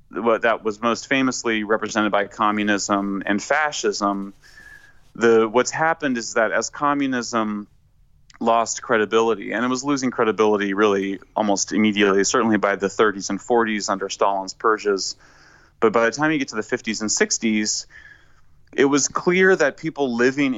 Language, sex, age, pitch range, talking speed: English, male, 30-49, 100-120 Hz, 150 wpm